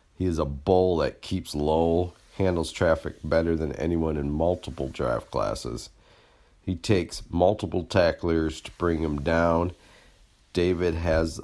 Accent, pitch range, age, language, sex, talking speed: American, 75-90 Hz, 50-69, English, male, 135 wpm